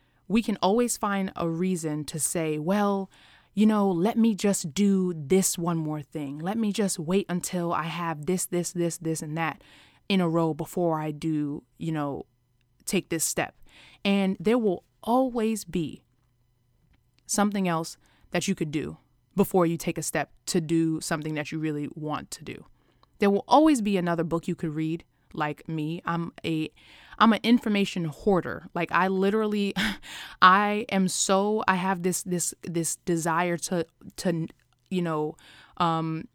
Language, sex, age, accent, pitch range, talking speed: English, female, 20-39, American, 160-195 Hz, 170 wpm